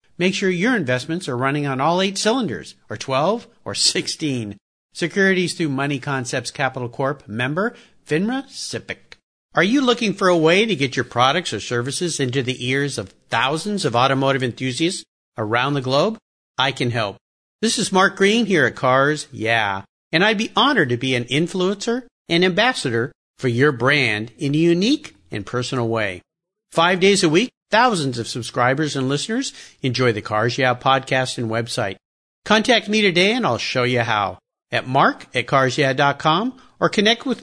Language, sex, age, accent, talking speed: English, male, 50-69, American, 170 wpm